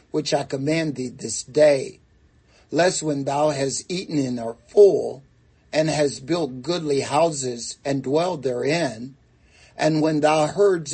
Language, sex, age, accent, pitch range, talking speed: English, male, 60-79, American, 135-160 Hz, 145 wpm